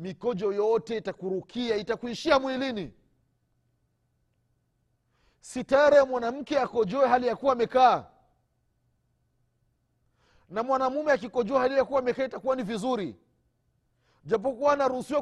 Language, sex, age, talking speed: Swahili, male, 40-59, 105 wpm